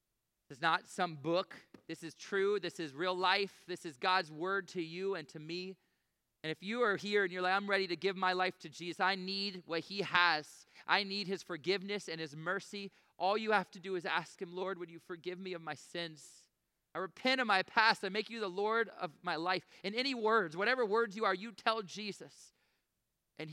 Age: 30-49